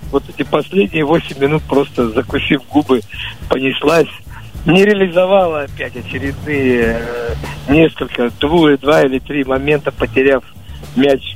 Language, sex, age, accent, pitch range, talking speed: Russian, male, 50-69, native, 115-145 Hz, 110 wpm